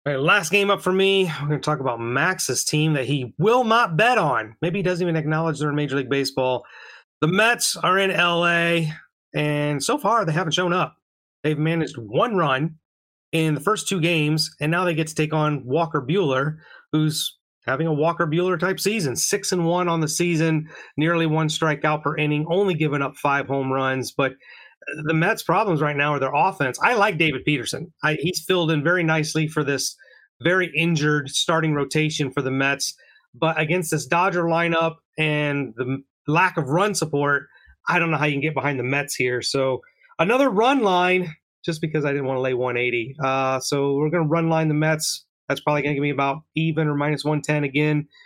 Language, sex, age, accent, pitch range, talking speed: English, male, 30-49, American, 145-175 Hz, 200 wpm